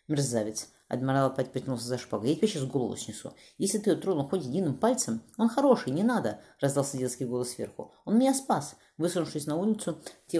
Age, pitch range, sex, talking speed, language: 30-49, 125-170 Hz, female, 190 wpm, Russian